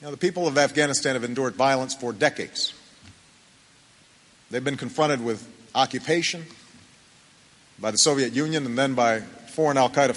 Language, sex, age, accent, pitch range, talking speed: English, male, 50-69, American, 130-165 Hz, 140 wpm